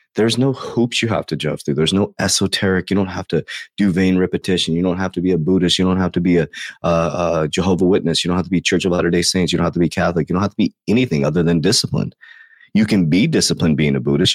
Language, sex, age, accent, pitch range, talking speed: English, male, 30-49, American, 85-105 Hz, 275 wpm